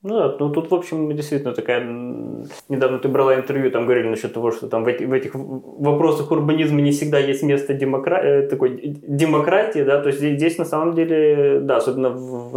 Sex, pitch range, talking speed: male, 125-155 Hz, 175 wpm